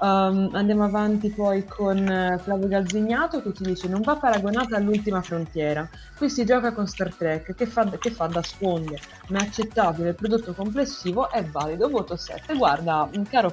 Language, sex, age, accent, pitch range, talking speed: Italian, female, 20-39, native, 170-215 Hz, 175 wpm